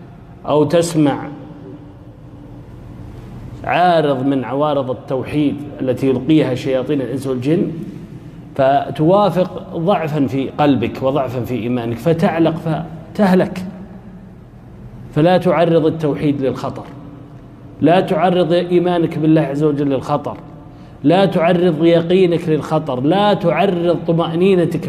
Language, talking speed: Arabic, 90 wpm